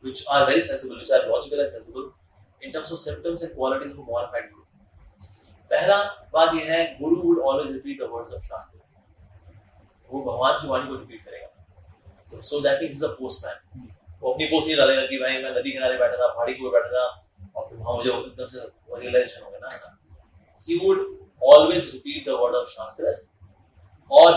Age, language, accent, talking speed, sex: 30-49, Hindi, native, 185 wpm, male